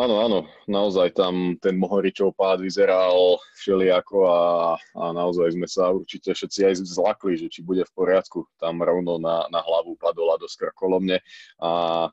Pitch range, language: 90-120 Hz, Slovak